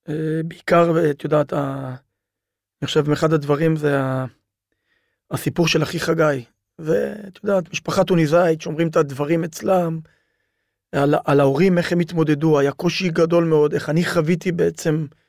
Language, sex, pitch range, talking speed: Hebrew, male, 150-180 Hz, 140 wpm